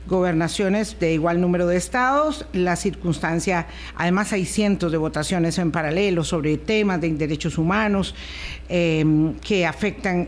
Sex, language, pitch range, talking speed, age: female, Spanish, 170-215 Hz, 135 wpm, 50-69